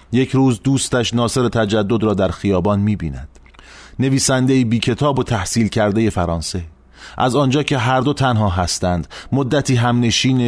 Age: 30-49